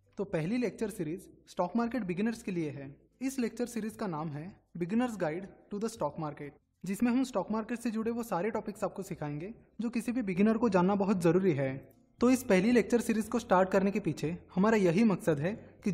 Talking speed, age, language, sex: 215 wpm, 20-39, Hindi, male